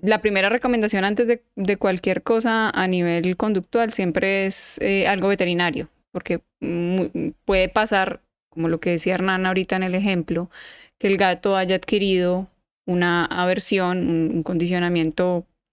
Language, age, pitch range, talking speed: Spanish, 10-29, 180-215 Hz, 150 wpm